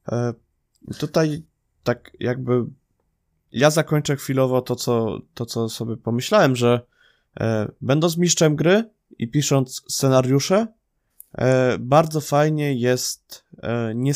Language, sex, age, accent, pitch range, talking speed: Polish, male, 20-39, native, 115-140 Hz, 95 wpm